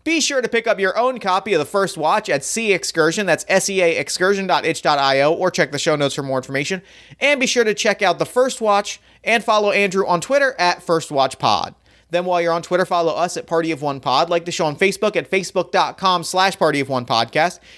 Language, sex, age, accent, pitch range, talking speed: English, male, 30-49, American, 160-205 Hz, 235 wpm